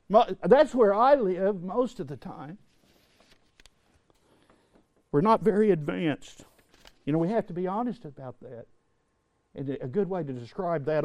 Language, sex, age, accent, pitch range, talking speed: English, male, 60-79, American, 145-200 Hz, 150 wpm